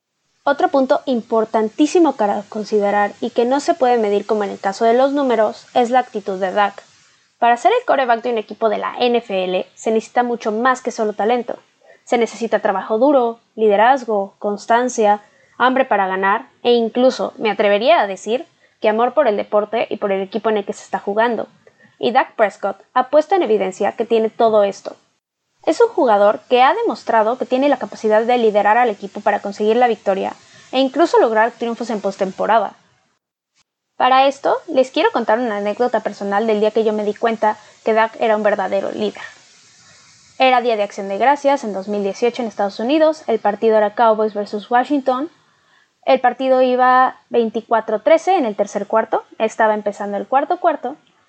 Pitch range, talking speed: 210-255 Hz, 180 wpm